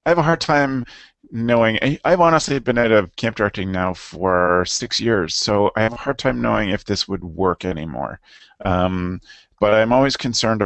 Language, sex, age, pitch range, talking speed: English, male, 30-49, 90-110 Hz, 195 wpm